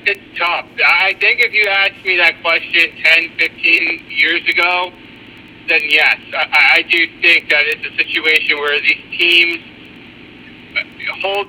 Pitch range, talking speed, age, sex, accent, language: 155-190 Hz, 145 wpm, 50-69, male, American, English